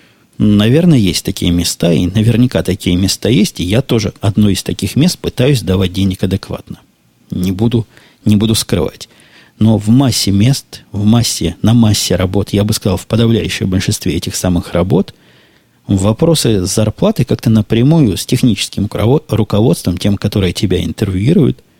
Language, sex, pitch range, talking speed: Russian, male, 95-120 Hz, 145 wpm